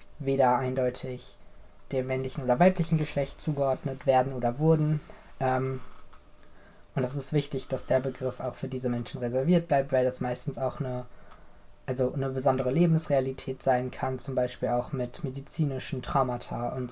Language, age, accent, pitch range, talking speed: German, 20-39, German, 125-140 Hz, 150 wpm